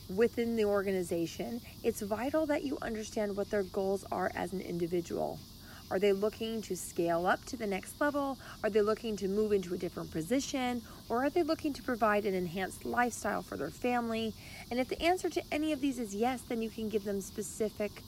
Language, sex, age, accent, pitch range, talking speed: English, female, 30-49, American, 195-255 Hz, 205 wpm